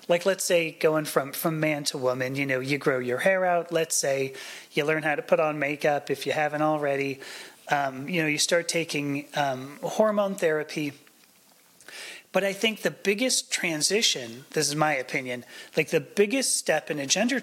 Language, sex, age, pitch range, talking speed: English, male, 30-49, 145-175 Hz, 190 wpm